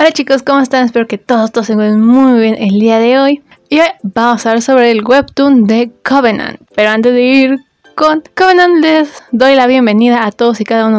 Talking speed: 225 wpm